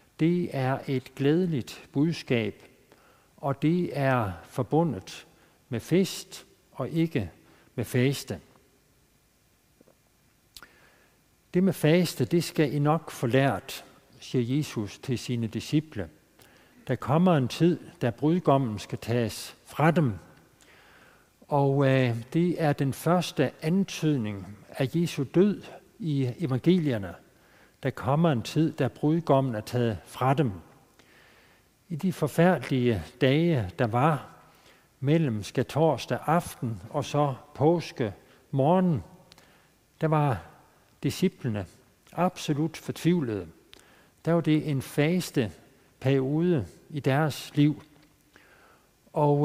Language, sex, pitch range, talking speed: Danish, male, 125-165 Hz, 105 wpm